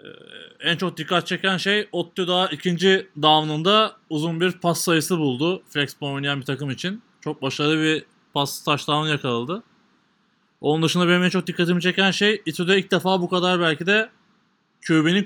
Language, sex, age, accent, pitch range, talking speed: Turkish, male, 30-49, native, 150-195 Hz, 160 wpm